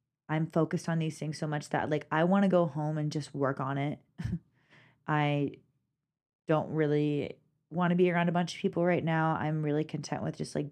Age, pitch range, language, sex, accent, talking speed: 20-39, 140-160 Hz, English, female, American, 215 wpm